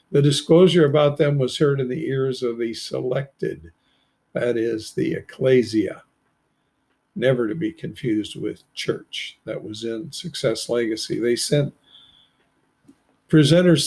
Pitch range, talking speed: 130-155 Hz, 130 wpm